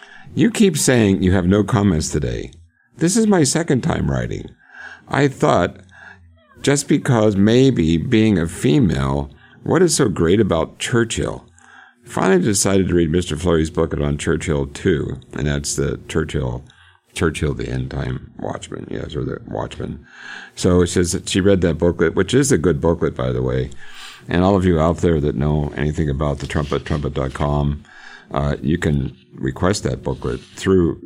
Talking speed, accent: 170 wpm, American